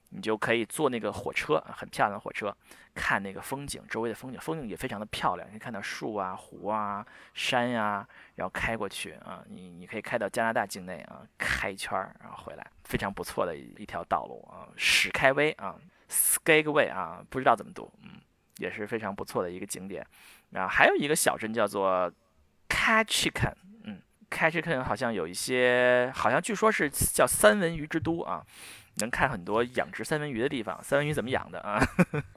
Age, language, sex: 20-39, Chinese, male